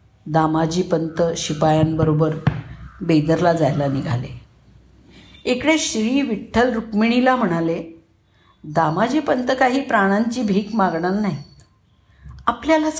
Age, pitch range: 50-69, 155-215 Hz